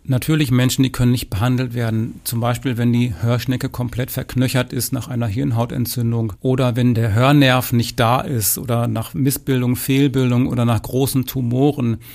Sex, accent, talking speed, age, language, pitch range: male, German, 165 wpm, 40-59, German, 115-135 Hz